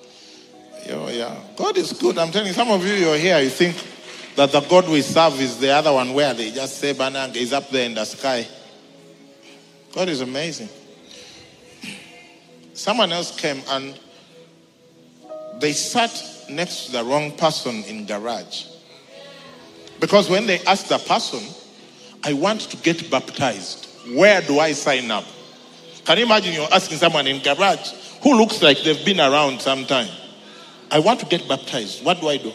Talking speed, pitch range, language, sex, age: 175 wpm, 140-210 Hz, English, male, 40-59